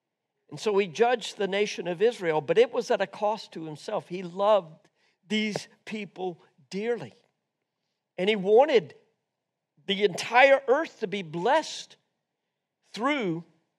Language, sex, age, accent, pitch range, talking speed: English, male, 50-69, American, 160-215 Hz, 135 wpm